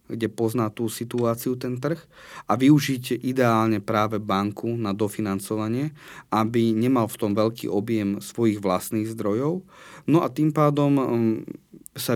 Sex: male